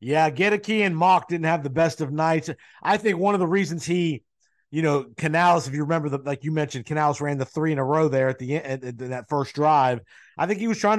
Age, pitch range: 50-69, 135-165 Hz